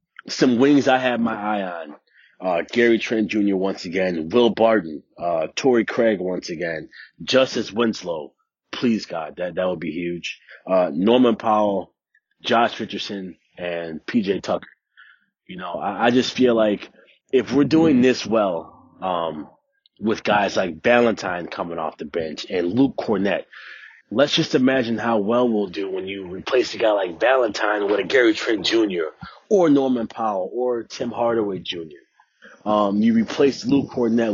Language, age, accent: English, 30-49, American